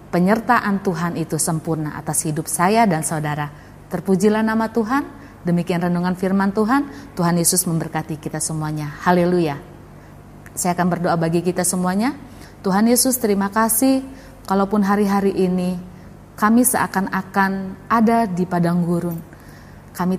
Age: 30-49